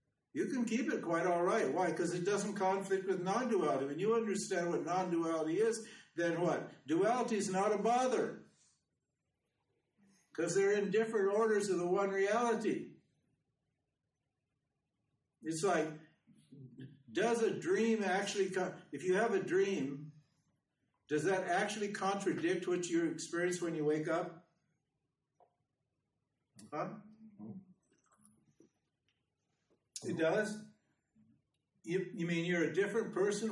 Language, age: English, 60-79